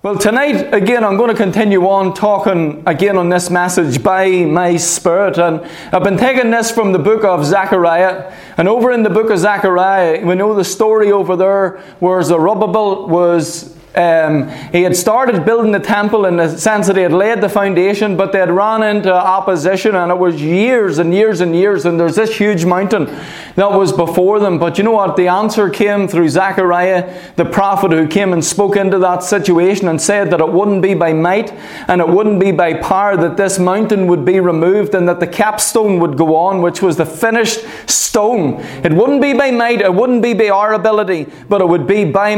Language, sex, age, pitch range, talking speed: English, male, 20-39, 180-215 Hz, 210 wpm